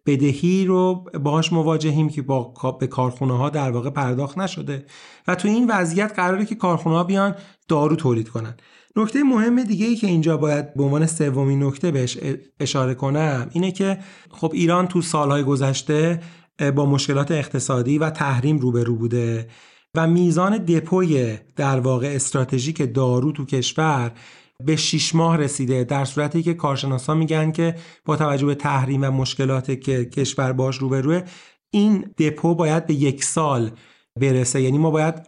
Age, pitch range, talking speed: 30-49, 135-165 Hz, 155 wpm